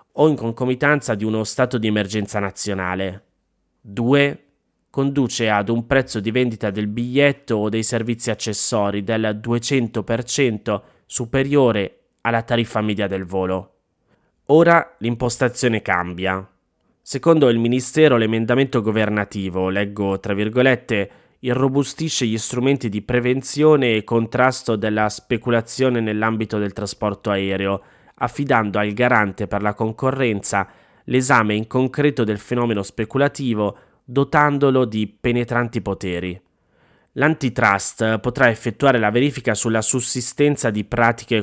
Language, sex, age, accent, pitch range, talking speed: Italian, male, 20-39, native, 105-130 Hz, 115 wpm